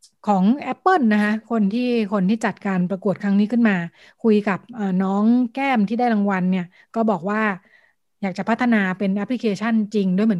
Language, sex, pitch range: Thai, female, 190-225 Hz